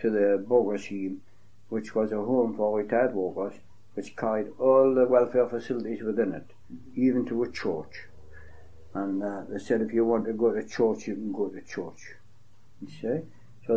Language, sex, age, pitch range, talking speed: English, male, 60-79, 100-120 Hz, 180 wpm